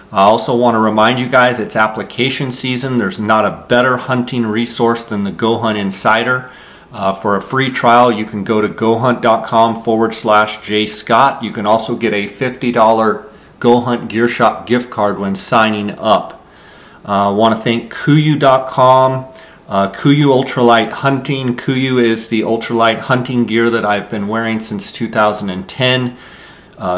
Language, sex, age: English, male, 40-59